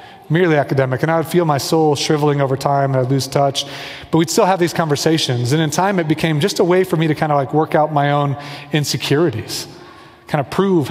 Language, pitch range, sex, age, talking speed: English, 140-165 Hz, male, 30-49, 235 wpm